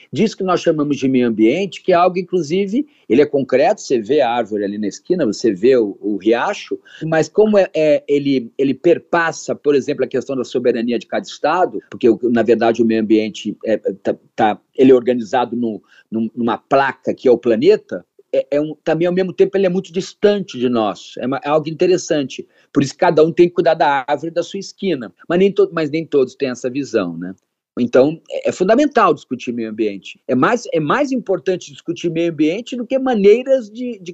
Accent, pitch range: Brazilian, 135-205 Hz